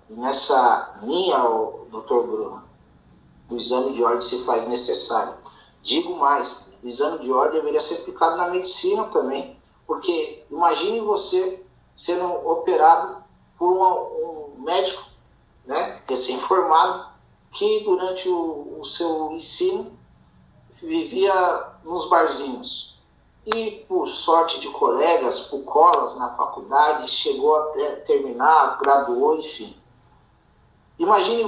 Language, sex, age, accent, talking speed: Portuguese, male, 50-69, Brazilian, 110 wpm